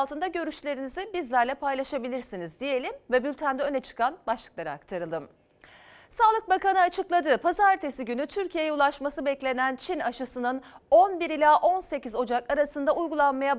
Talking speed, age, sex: 120 wpm, 40-59, female